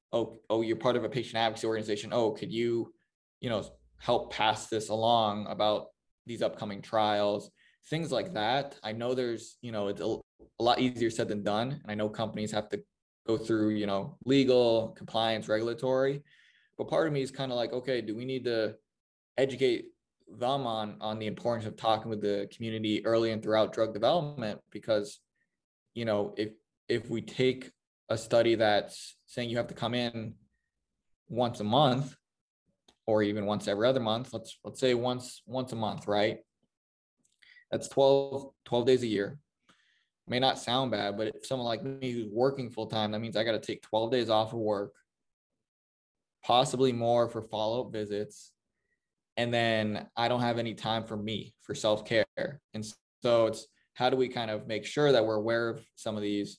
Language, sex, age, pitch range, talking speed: English, male, 20-39, 105-125 Hz, 185 wpm